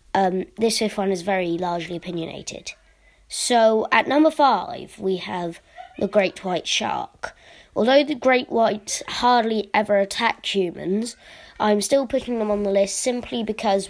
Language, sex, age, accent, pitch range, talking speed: English, female, 20-39, British, 185-230 Hz, 150 wpm